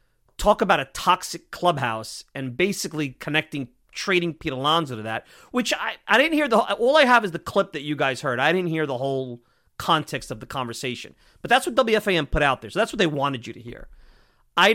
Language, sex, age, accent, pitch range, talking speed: English, male, 30-49, American, 130-180 Hz, 220 wpm